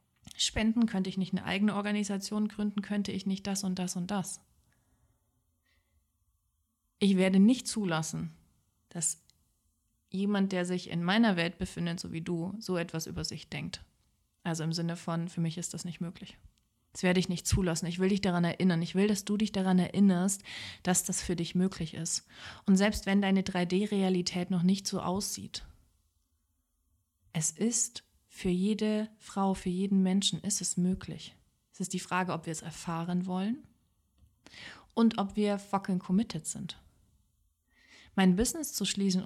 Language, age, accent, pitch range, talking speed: German, 30-49, German, 170-210 Hz, 165 wpm